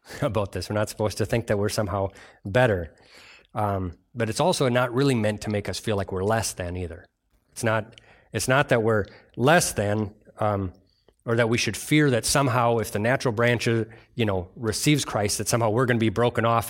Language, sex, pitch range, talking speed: English, male, 105-130 Hz, 210 wpm